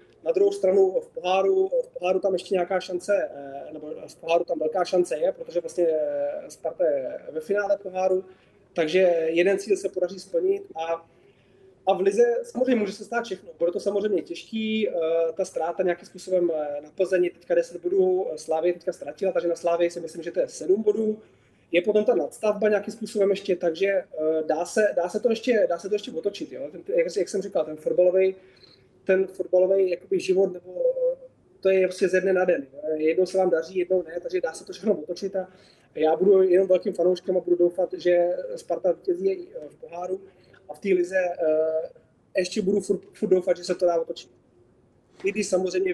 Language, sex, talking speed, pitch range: Czech, male, 190 wpm, 170-205 Hz